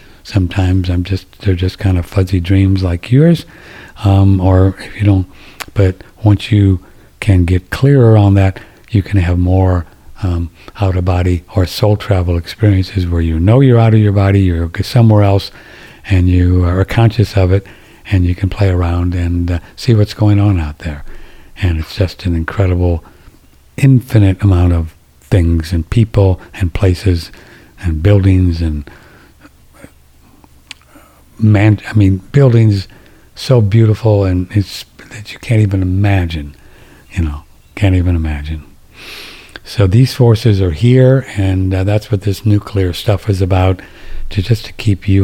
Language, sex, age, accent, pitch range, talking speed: English, male, 60-79, American, 90-105 Hz, 155 wpm